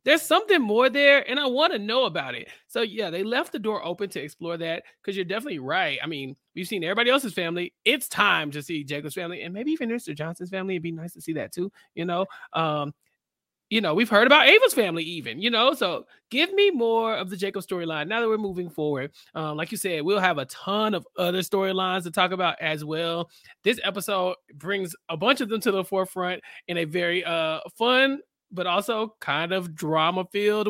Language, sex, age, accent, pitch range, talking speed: English, male, 20-39, American, 155-215 Hz, 220 wpm